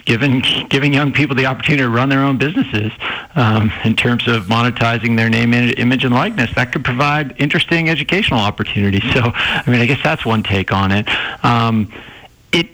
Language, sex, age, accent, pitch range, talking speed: English, male, 50-69, American, 110-135 Hz, 185 wpm